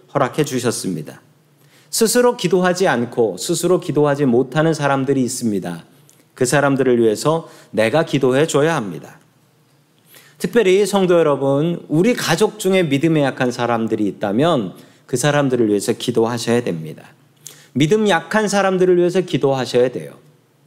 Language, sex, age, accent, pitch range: Korean, male, 40-59, native, 135-175 Hz